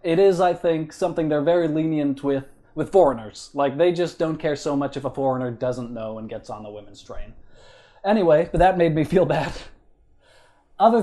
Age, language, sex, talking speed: 30-49, English, male, 200 wpm